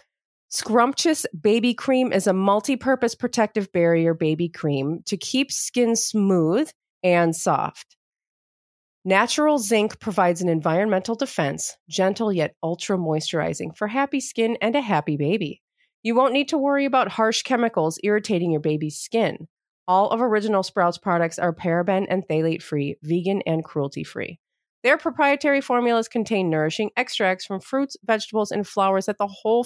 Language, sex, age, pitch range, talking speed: English, female, 30-49, 175-240 Hz, 150 wpm